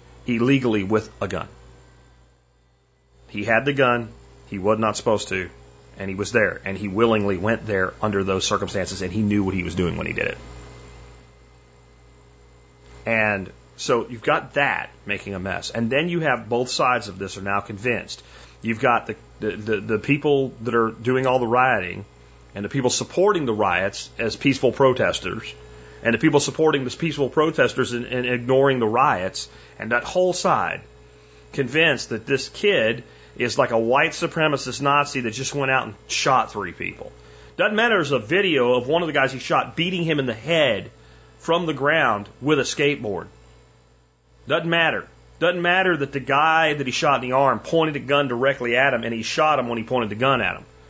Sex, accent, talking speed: male, American, 190 wpm